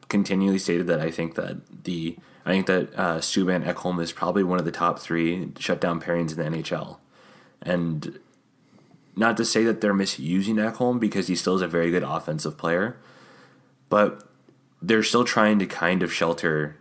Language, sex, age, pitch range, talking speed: English, male, 20-39, 85-100 Hz, 180 wpm